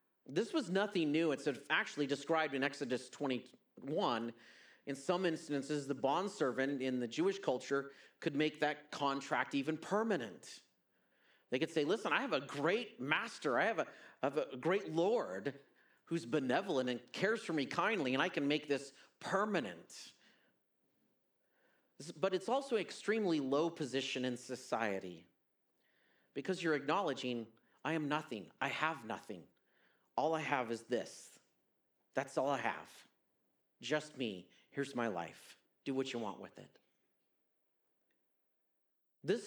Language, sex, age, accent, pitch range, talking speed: English, male, 40-59, American, 140-195 Hz, 145 wpm